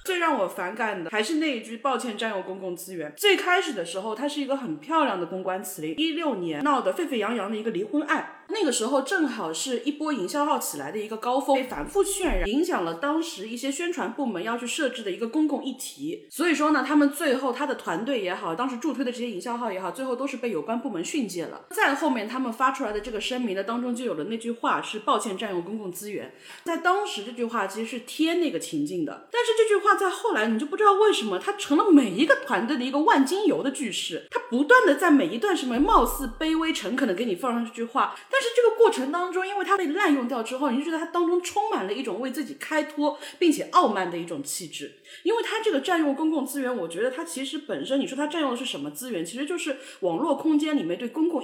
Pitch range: 245-330 Hz